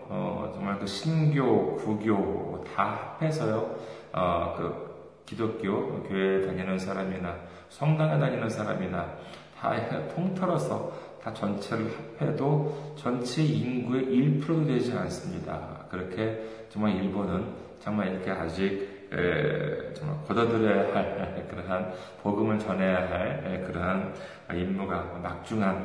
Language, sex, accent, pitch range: Korean, male, native, 95-115 Hz